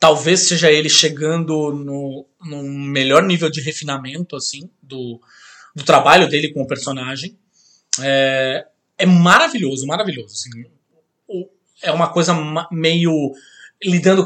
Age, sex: 20-39, male